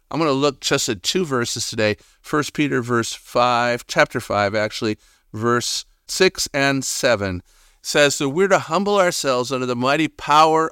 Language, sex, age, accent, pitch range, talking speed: English, male, 50-69, American, 105-145 Hz, 170 wpm